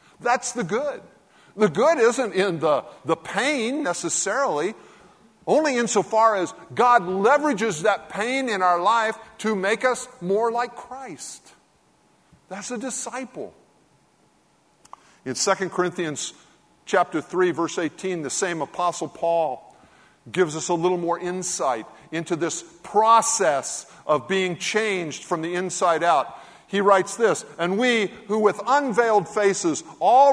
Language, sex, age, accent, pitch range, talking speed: English, male, 50-69, American, 165-225 Hz, 135 wpm